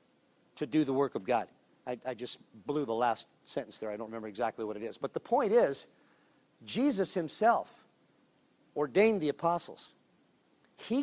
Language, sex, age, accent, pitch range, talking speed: English, male, 50-69, American, 130-180 Hz, 170 wpm